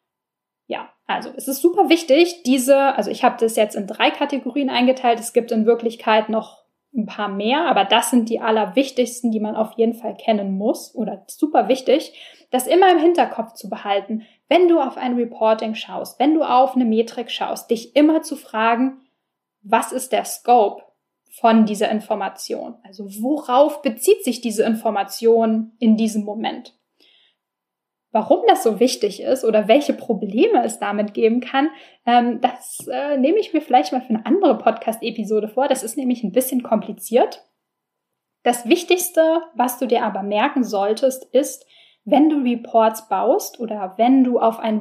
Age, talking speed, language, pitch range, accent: 10-29, 165 wpm, German, 220-270 Hz, German